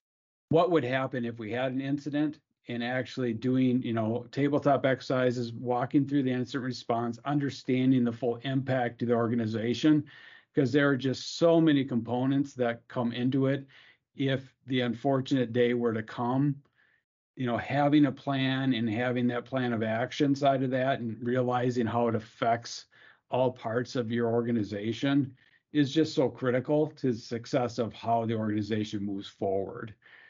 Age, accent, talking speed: 50-69, American, 160 wpm